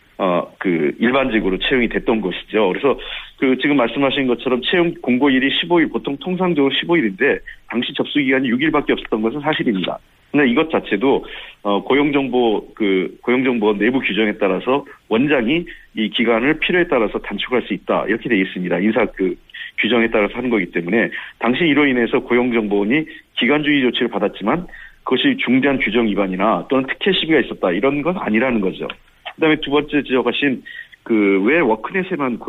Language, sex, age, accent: Korean, male, 40-59, native